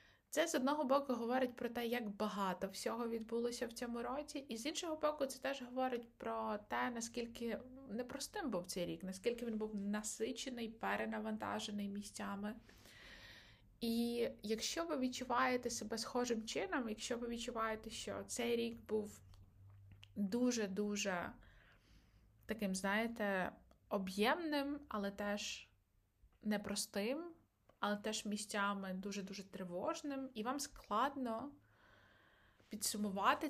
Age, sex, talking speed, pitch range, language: 20-39, female, 115 wpm, 205-245 Hz, Ukrainian